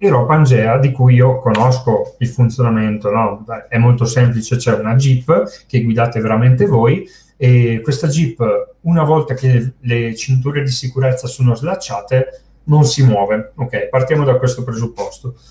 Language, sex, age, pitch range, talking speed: Italian, male, 30-49, 115-140 Hz, 165 wpm